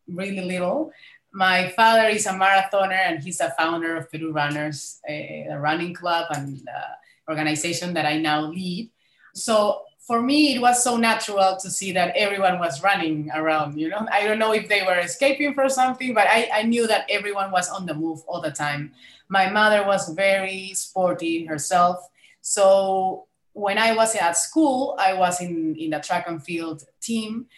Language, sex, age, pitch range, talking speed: English, female, 20-39, 165-220 Hz, 180 wpm